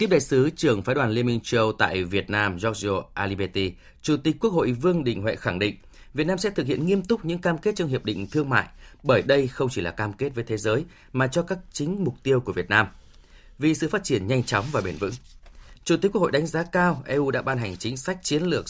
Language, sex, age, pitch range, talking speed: Vietnamese, male, 20-39, 105-150 Hz, 260 wpm